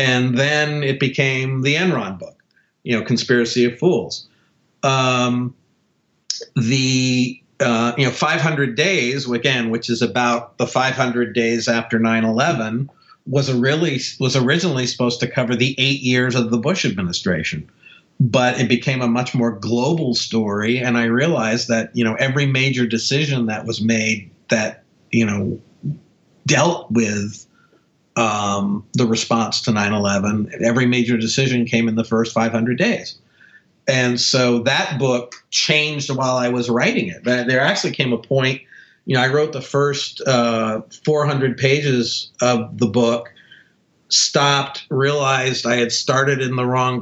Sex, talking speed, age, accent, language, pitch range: male, 155 wpm, 50-69, American, English, 115-135 Hz